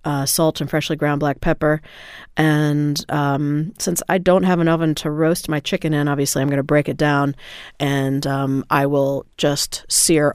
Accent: American